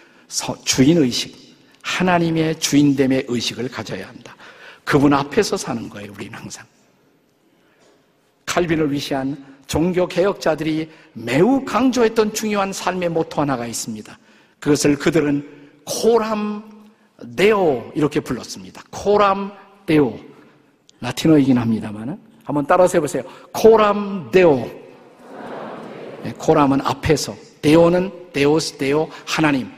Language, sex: Korean, male